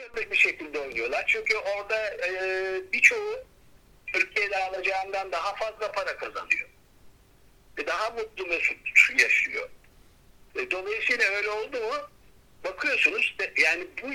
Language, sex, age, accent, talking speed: Turkish, male, 60-79, native, 115 wpm